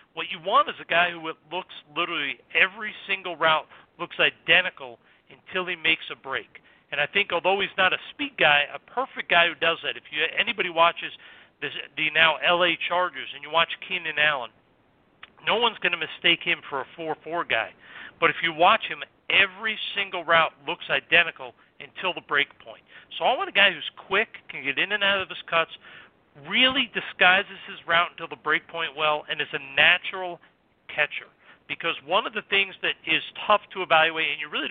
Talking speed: 195 wpm